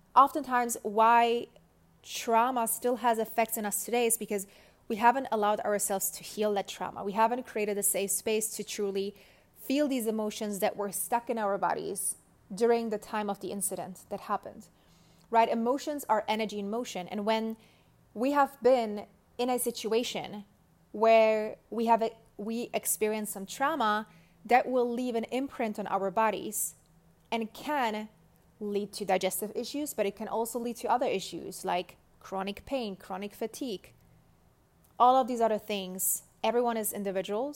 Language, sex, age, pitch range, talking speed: English, female, 20-39, 195-235 Hz, 160 wpm